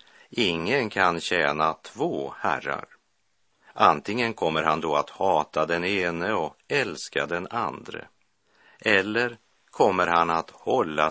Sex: male